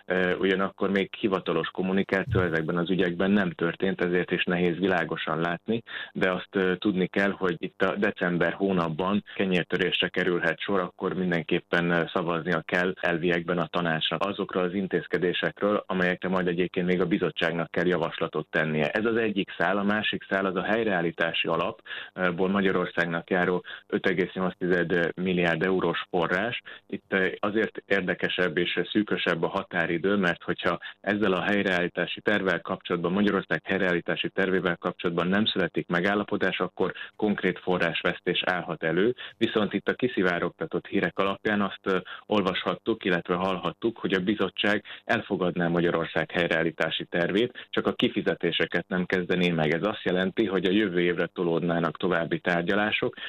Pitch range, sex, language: 85-95 Hz, male, Hungarian